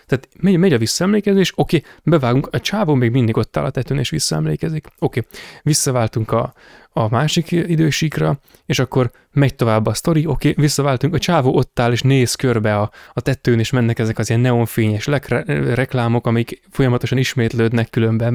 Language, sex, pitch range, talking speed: Hungarian, male, 115-145 Hz, 170 wpm